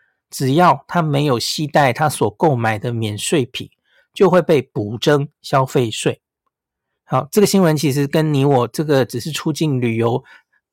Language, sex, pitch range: Chinese, male, 130-175 Hz